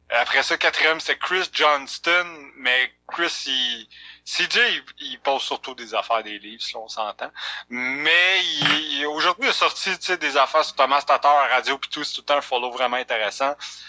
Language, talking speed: French, 195 wpm